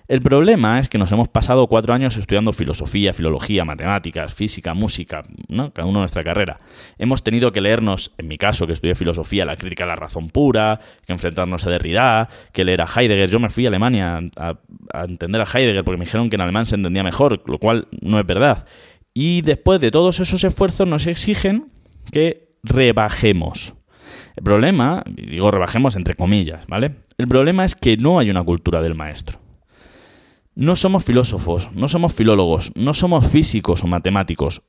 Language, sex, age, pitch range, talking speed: Spanish, male, 20-39, 95-130 Hz, 185 wpm